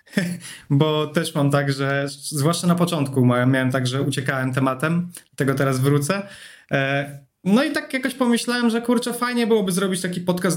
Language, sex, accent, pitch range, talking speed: Polish, male, native, 150-200 Hz, 160 wpm